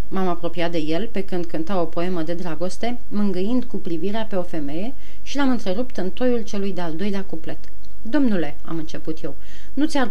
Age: 30-49